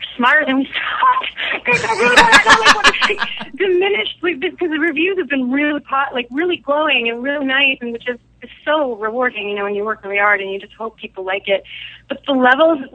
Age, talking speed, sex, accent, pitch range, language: 30-49, 225 wpm, female, American, 195-250 Hz, English